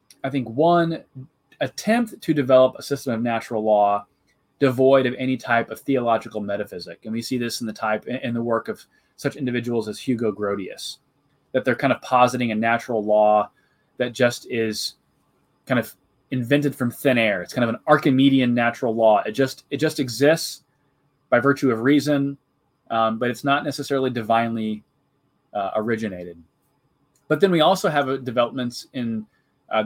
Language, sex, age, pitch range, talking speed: English, male, 20-39, 110-135 Hz, 170 wpm